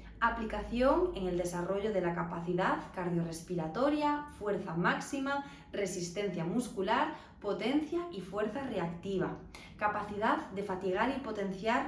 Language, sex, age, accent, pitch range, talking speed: Spanish, female, 20-39, Spanish, 180-255 Hz, 105 wpm